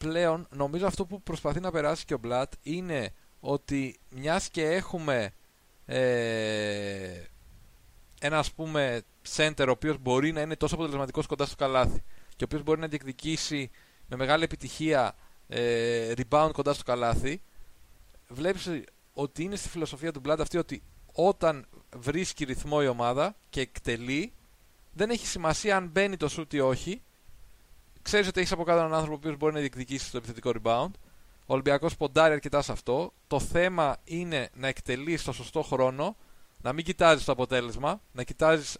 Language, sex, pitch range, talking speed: Greek, male, 120-155 Hz, 160 wpm